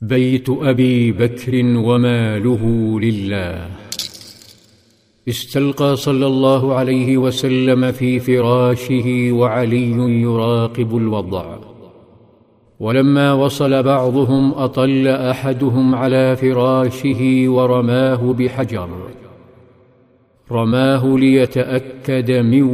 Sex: male